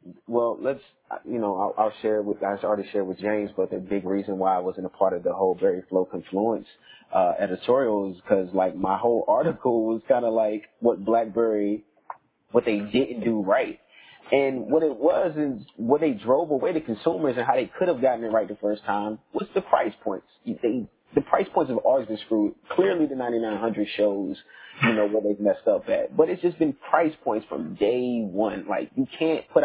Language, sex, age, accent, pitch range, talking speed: English, male, 30-49, American, 105-135 Hz, 210 wpm